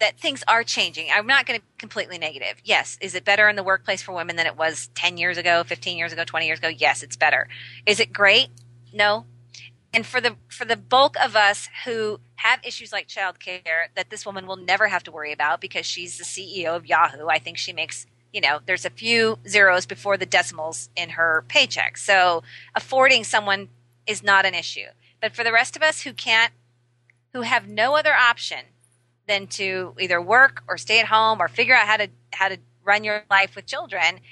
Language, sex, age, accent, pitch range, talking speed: English, female, 30-49, American, 155-220 Hz, 215 wpm